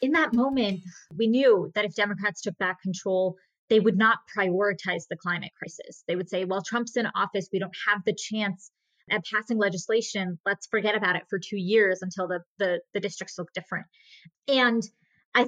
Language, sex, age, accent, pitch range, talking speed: English, female, 20-39, American, 190-225 Hz, 190 wpm